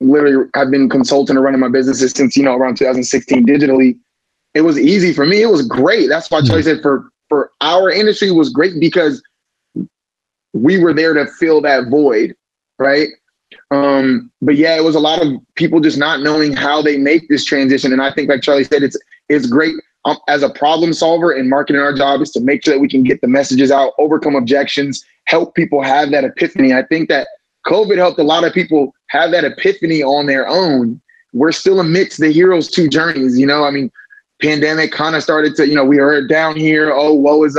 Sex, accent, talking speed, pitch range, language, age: male, American, 215 wpm, 135-160 Hz, English, 20-39